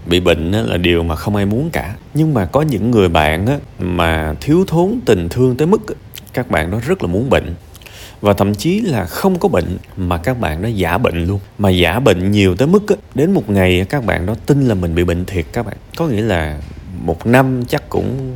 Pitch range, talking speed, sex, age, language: 85-120 Hz, 230 wpm, male, 30-49, Vietnamese